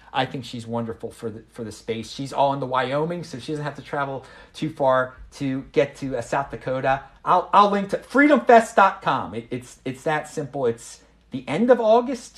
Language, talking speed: English, 205 wpm